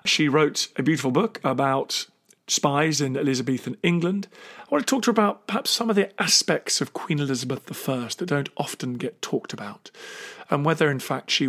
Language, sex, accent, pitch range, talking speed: English, male, British, 135-180 Hz, 195 wpm